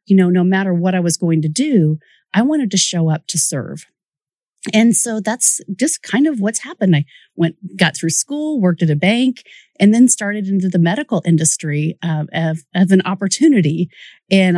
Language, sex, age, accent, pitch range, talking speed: English, female, 40-59, American, 165-215 Hz, 190 wpm